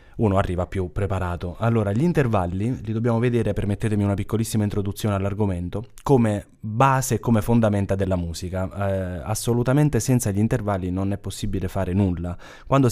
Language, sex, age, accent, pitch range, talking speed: Italian, male, 20-39, native, 95-115 Hz, 155 wpm